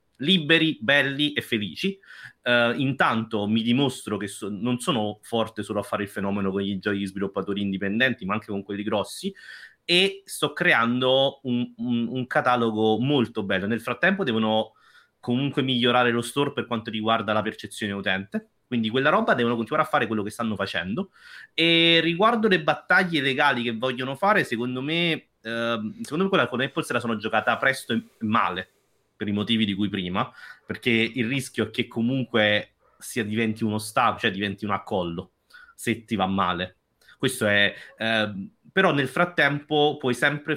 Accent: native